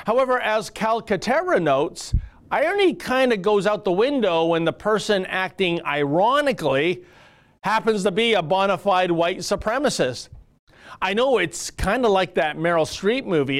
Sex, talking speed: male, 150 wpm